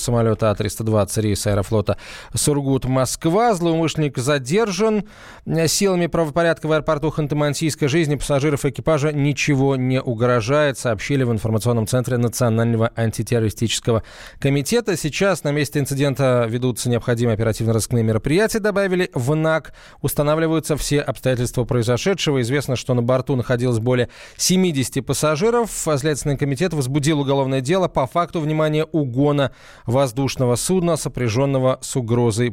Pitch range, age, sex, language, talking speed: 120-155 Hz, 20-39, male, Russian, 115 wpm